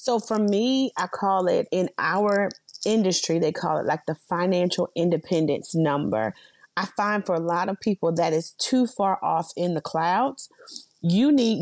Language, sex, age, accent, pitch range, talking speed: English, female, 30-49, American, 175-240 Hz, 175 wpm